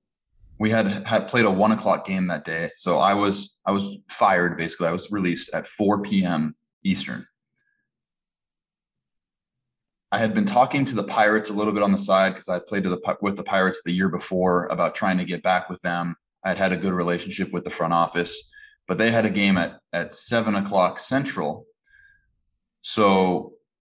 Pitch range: 90-115 Hz